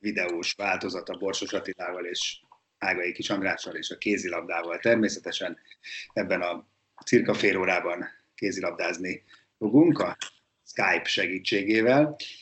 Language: Hungarian